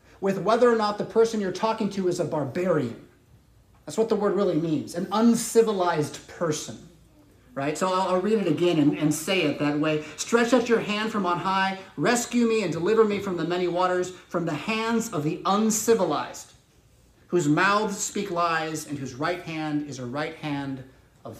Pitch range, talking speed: 155-220 Hz, 195 wpm